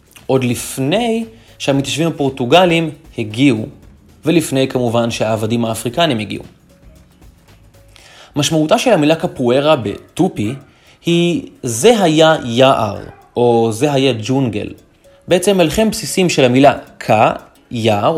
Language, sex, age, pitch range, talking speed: Hebrew, male, 20-39, 115-165 Hz, 100 wpm